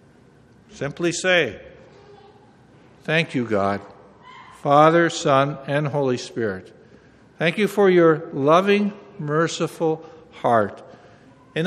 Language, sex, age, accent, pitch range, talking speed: English, male, 60-79, American, 145-190 Hz, 95 wpm